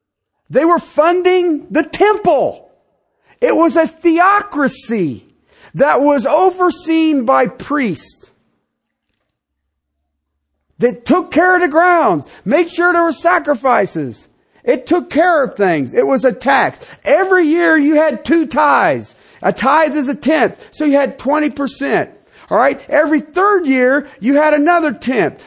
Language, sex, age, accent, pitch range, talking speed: English, male, 50-69, American, 240-320 Hz, 135 wpm